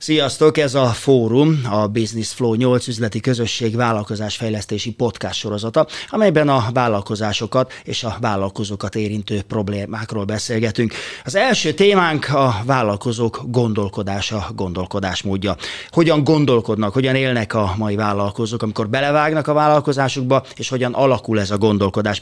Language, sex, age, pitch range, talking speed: Hungarian, male, 30-49, 105-135 Hz, 125 wpm